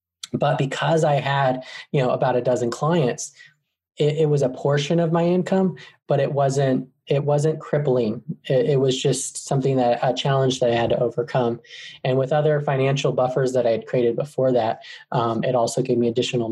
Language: English